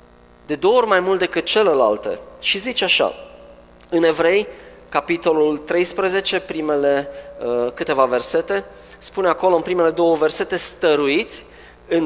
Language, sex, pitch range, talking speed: Romanian, male, 100-170 Hz, 125 wpm